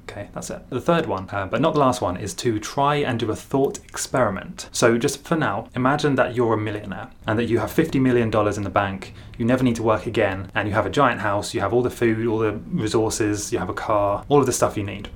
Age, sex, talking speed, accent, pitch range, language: 20-39, male, 270 wpm, British, 105-130 Hz, English